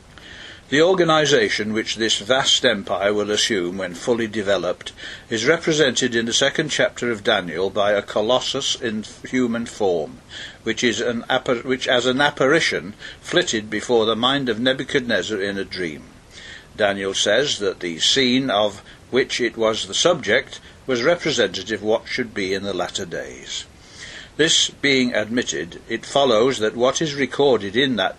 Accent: British